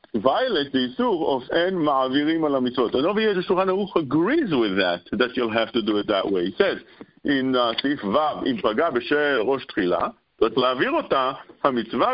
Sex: male